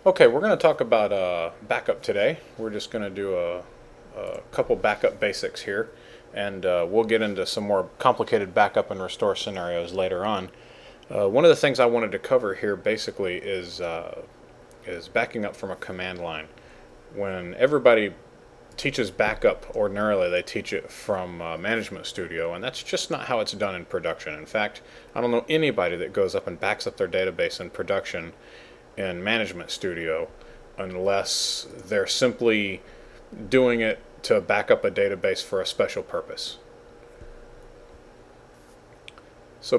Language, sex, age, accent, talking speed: English, male, 30-49, American, 165 wpm